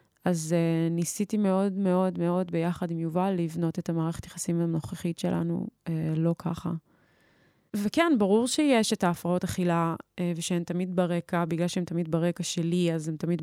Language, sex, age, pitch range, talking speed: Hebrew, female, 20-39, 165-185 Hz, 160 wpm